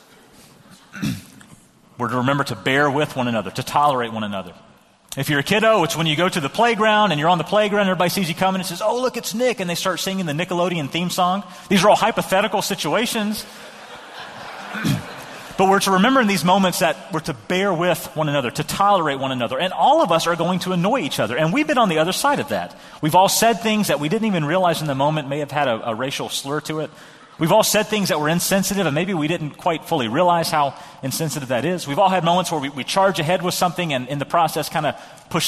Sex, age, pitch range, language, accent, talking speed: male, 30-49, 145-190 Hz, English, American, 250 wpm